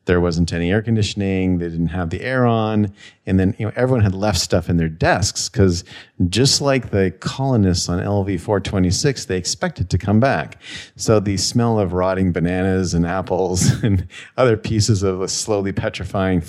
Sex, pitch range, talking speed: male, 85-110 Hz, 190 wpm